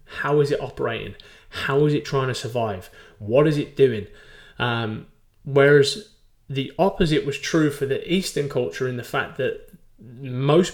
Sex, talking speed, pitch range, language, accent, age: male, 160 wpm, 125-150 Hz, English, British, 20-39